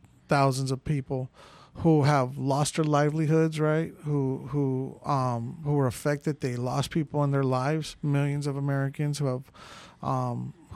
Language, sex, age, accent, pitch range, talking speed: English, male, 50-69, American, 135-160 Hz, 150 wpm